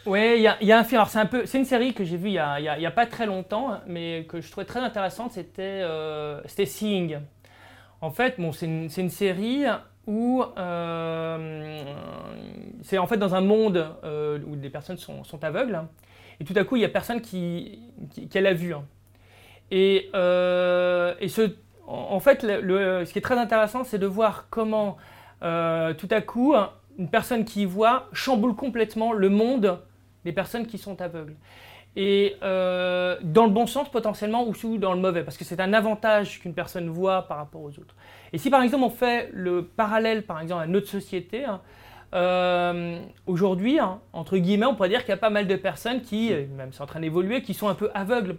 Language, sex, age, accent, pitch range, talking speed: French, male, 20-39, French, 170-220 Hz, 205 wpm